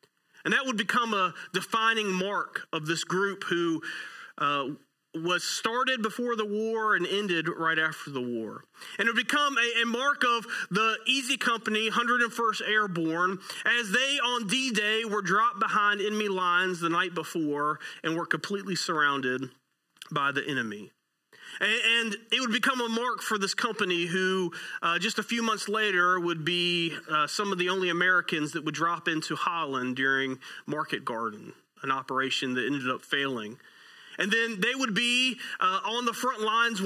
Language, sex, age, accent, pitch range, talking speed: English, male, 40-59, American, 145-215 Hz, 170 wpm